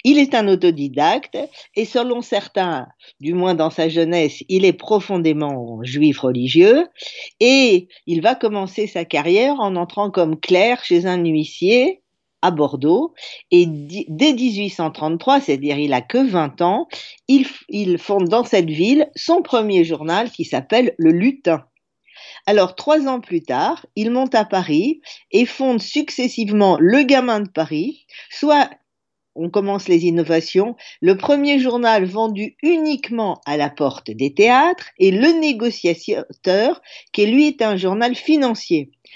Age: 50-69